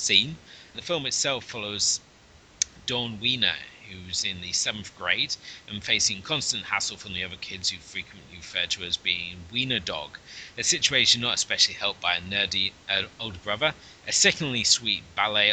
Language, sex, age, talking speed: English, male, 30-49, 165 wpm